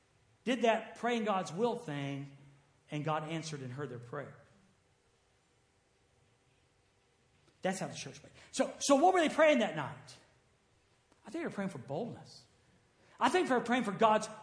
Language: English